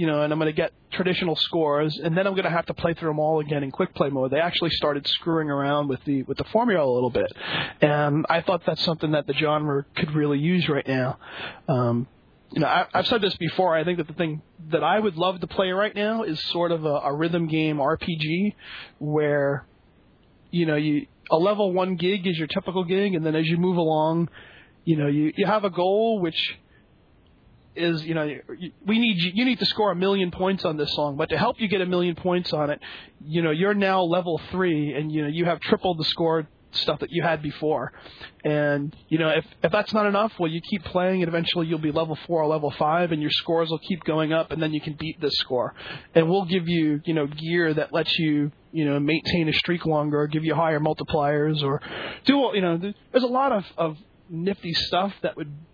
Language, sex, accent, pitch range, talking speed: English, male, American, 150-180 Hz, 235 wpm